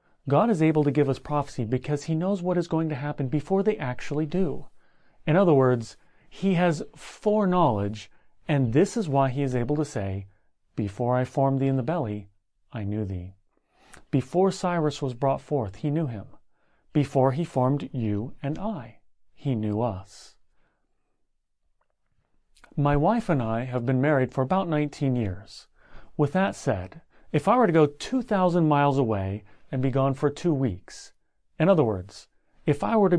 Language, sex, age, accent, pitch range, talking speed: English, male, 30-49, American, 125-175 Hz, 175 wpm